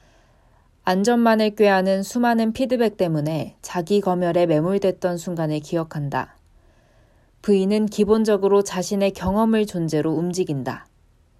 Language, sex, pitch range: Korean, female, 150-195 Hz